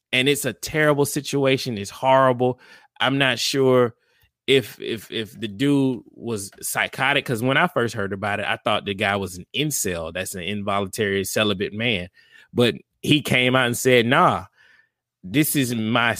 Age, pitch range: 20-39, 105-130 Hz